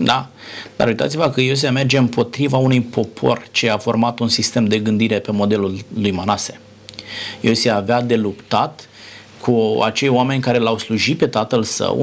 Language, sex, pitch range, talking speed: Romanian, male, 110-130 Hz, 165 wpm